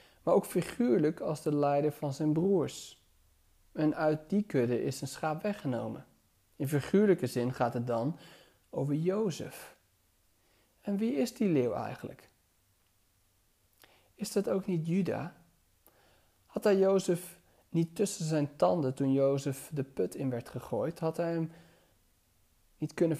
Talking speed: 140 wpm